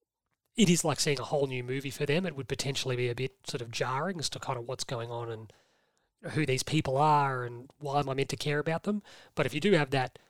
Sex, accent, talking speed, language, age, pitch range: male, Australian, 270 wpm, English, 30-49, 135-170 Hz